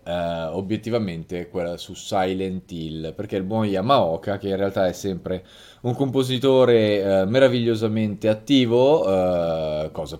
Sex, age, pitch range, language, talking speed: male, 20-39, 90-120 Hz, Italian, 110 wpm